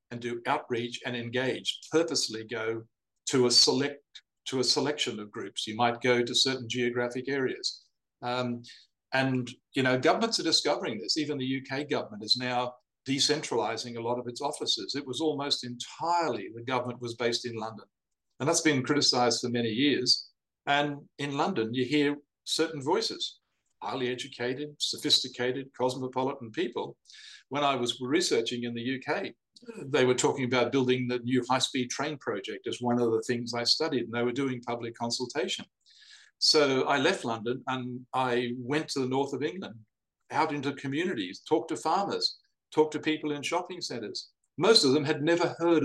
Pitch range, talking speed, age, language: 120-150 Hz, 170 wpm, 50-69, English